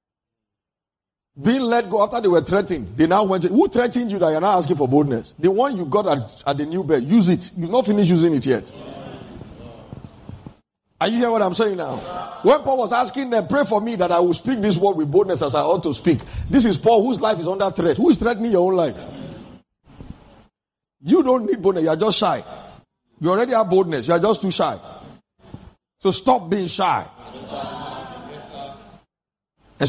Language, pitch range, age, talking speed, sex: English, 160-220 Hz, 50-69, 200 wpm, male